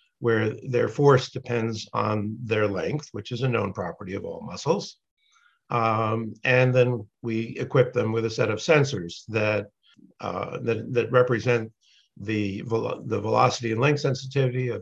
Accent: American